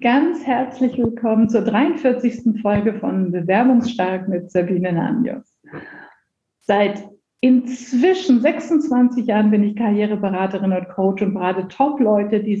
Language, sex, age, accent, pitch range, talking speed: German, female, 50-69, German, 195-245 Hz, 115 wpm